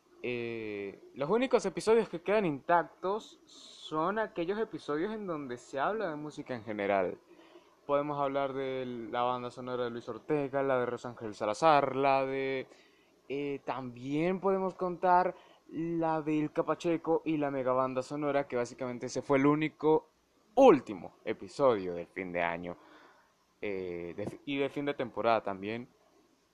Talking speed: 150 wpm